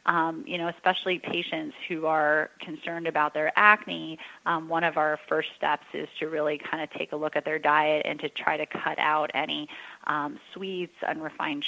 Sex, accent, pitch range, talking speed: female, American, 155-180 Hz, 195 wpm